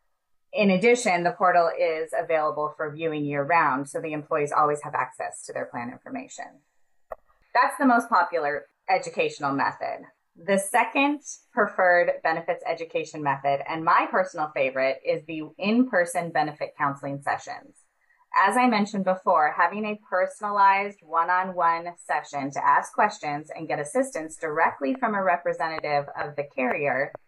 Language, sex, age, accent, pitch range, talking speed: English, female, 20-39, American, 155-215 Hz, 140 wpm